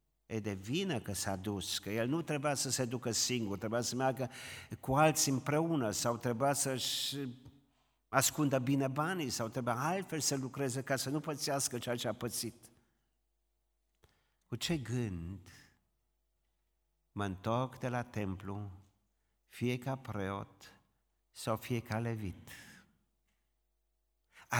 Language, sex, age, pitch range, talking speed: Romanian, male, 50-69, 105-140 Hz, 135 wpm